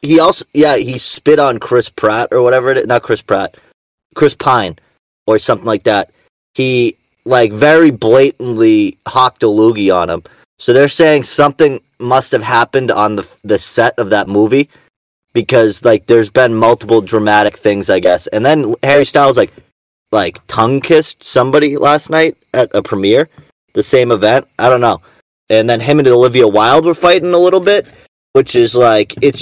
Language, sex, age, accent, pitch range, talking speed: English, male, 30-49, American, 115-160 Hz, 175 wpm